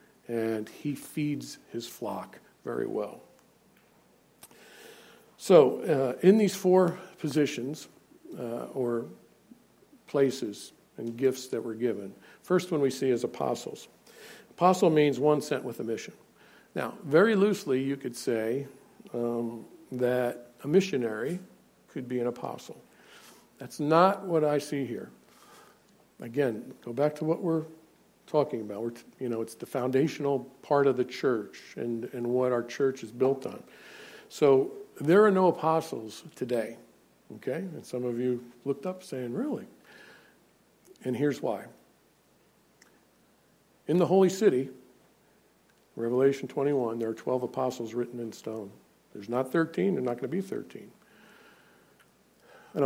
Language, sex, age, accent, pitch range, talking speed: English, male, 50-69, American, 120-160 Hz, 140 wpm